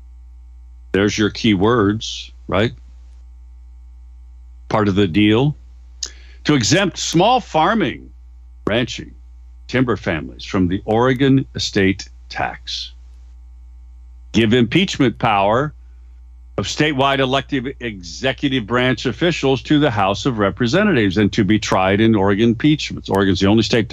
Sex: male